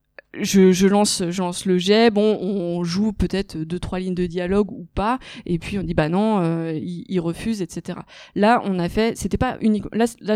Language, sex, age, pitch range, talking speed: French, female, 20-39, 180-210 Hz, 215 wpm